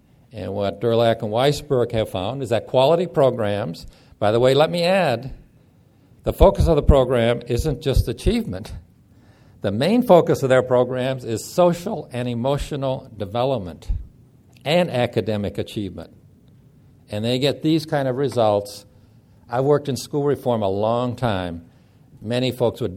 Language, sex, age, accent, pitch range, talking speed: English, male, 60-79, American, 115-145 Hz, 150 wpm